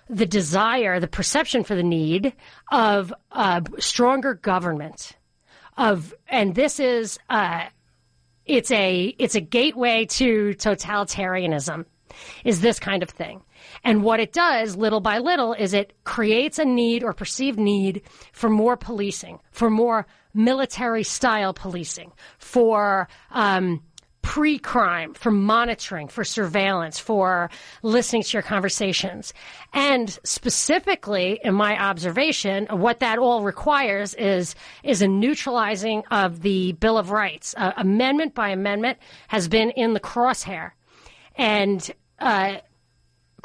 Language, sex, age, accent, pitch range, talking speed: English, female, 40-59, American, 195-240 Hz, 125 wpm